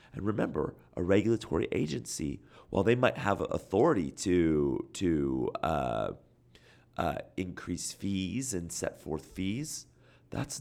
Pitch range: 95-115 Hz